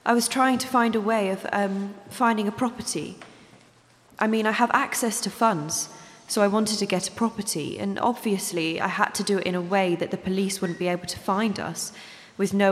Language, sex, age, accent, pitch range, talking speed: English, female, 20-39, British, 185-215 Hz, 220 wpm